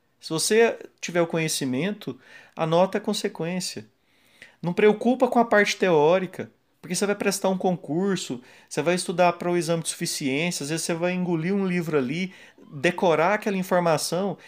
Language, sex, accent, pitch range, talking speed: Portuguese, male, Brazilian, 125-175 Hz, 160 wpm